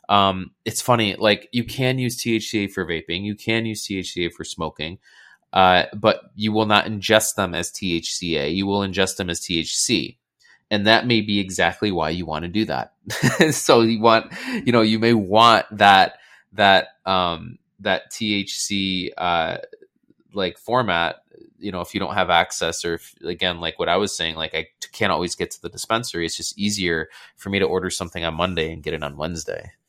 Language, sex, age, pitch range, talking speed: English, male, 20-39, 90-110 Hz, 190 wpm